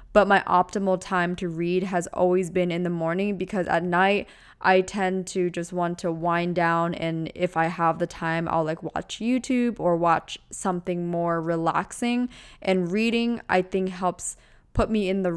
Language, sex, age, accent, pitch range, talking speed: English, female, 20-39, American, 170-195 Hz, 185 wpm